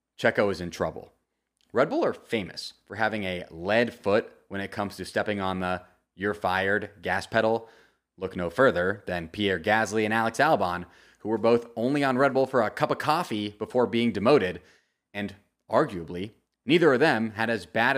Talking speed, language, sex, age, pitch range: 185 wpm, English, male, 30-49, 90-115 Hz